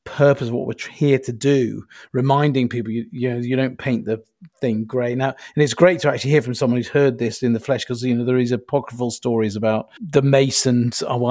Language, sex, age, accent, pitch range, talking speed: English, male, 40-59, British, 120-150 Hz, 235 wpm